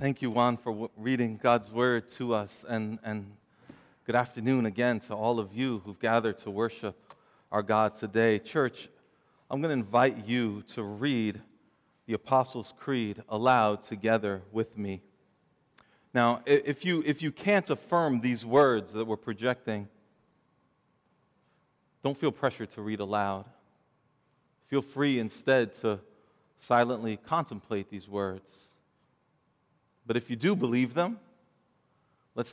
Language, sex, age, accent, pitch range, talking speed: English, male, 40-59, American, 110-150 Hz, 135 wpm